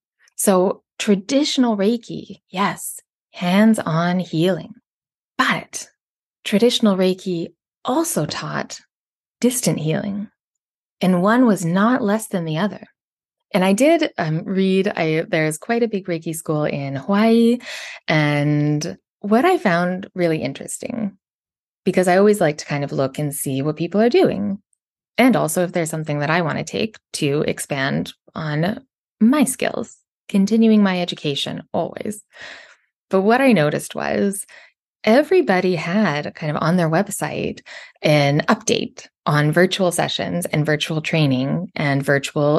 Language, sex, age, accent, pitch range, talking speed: English, female, 20-39, American, 155-225 Hz, 135 wpm